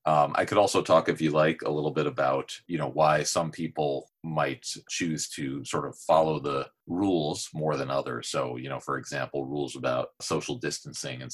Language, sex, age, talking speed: English, male, 40-59, 200 wpm